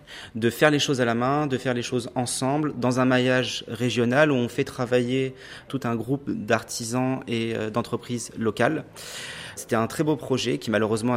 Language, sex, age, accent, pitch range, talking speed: French, male, 30-49, French, 110-130 Hz, 185 wpm